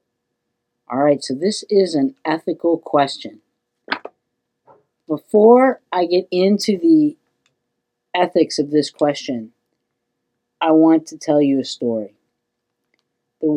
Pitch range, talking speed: 130-185 Hz, 110 wpm